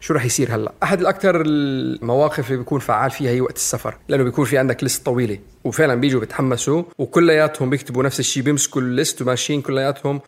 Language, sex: Arabic, male